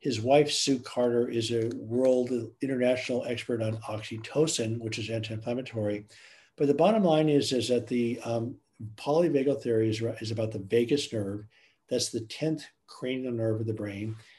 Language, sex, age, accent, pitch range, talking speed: English, male, 50-69, American, 115-135 Hz, 165 wpm